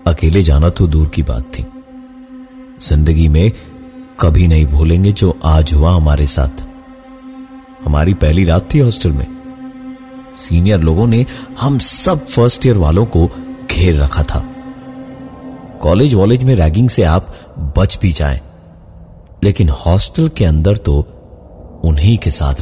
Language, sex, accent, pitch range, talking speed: Hindi, male, native, 75-115 Hz, 140 wpm